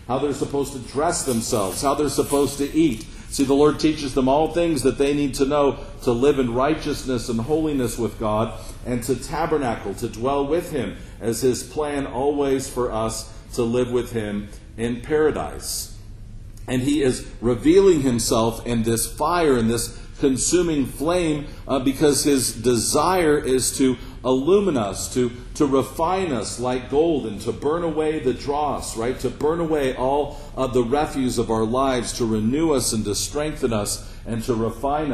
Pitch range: 115-145 Hz